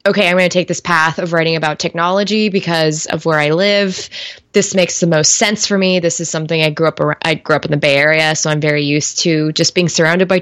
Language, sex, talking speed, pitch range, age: English, female, 265 wpm, 165-195 Hz, 20-39